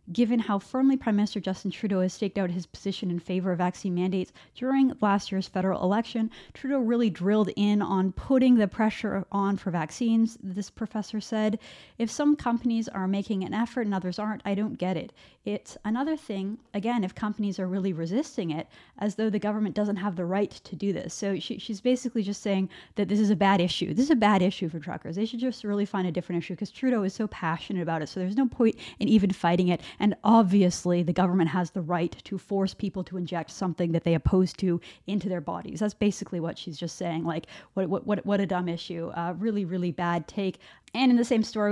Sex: female